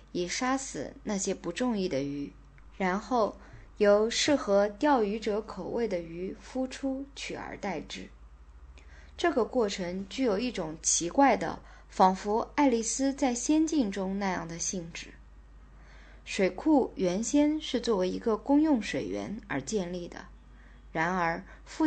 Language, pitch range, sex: Chinese, 175-245 Hz, female